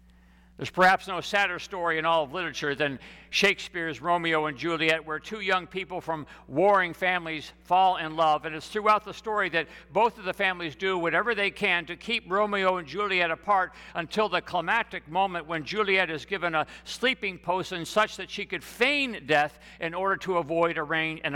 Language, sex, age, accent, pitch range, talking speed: English, male, 60-79, American, 115-185 Hz, 190 wpm